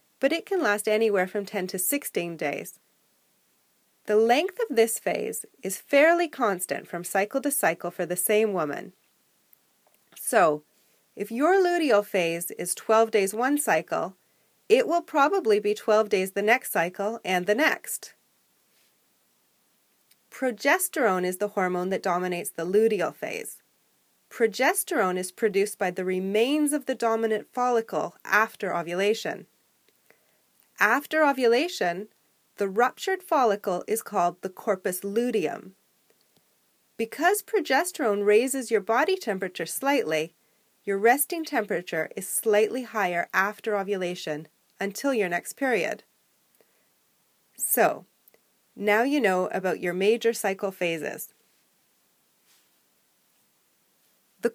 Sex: female